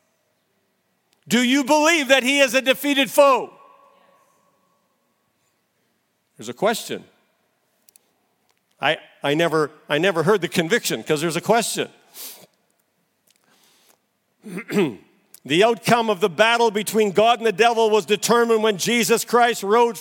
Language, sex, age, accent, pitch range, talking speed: English, male, 50-69, American, 215-245 Hz, 120 wpm